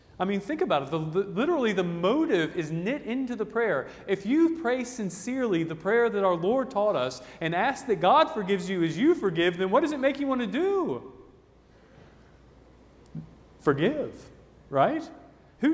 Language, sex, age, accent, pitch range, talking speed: English, male, 40-59, American, 155-215 Hz, 180 wpm